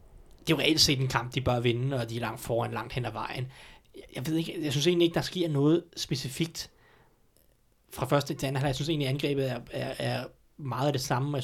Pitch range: 125-160 Hz